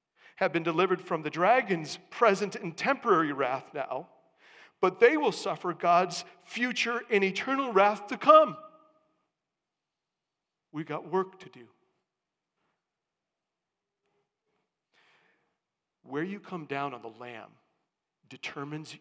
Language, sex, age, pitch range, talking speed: English, male, 50-69, 150-210 Hz, 110 wpm